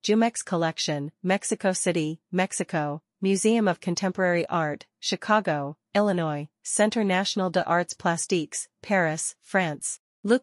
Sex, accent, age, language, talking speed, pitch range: female, American, 40-59, English, 110 wpm, 160-195 Hz